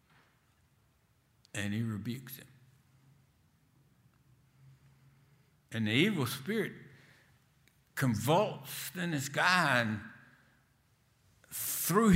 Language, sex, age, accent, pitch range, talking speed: English, male, 60-79, American, 125-140 Hz, 70 wpm